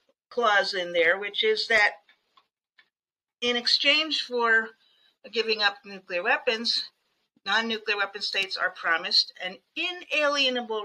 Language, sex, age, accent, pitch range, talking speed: English, female, 50-69, American, 175-230 Hz, 110 wpm